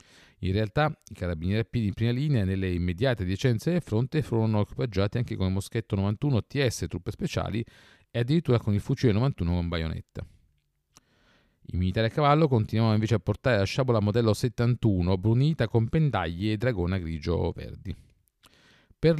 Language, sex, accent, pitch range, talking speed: Italian, male, native, 100-130 Hz, 165 wpm